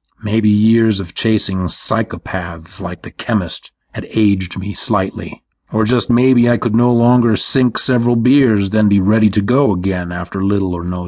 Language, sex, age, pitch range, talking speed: English, male, 40-59, 95-120 Hz, 175 wpm